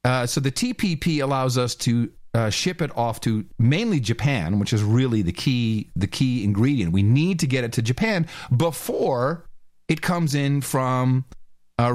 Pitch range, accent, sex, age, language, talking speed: 115-185 Hz, American, male, 40-59, English, 170 wpm